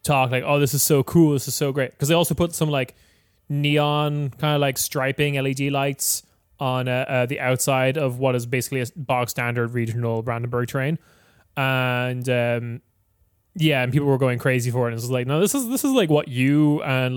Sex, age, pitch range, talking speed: male, 20-39, 115-145 Hz, 210 wpm